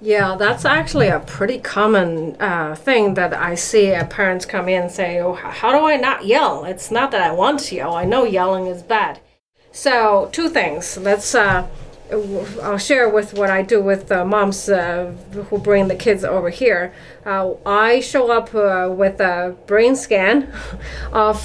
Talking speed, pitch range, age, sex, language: 180 wpm, 190-225 Hz, 30-49, female, English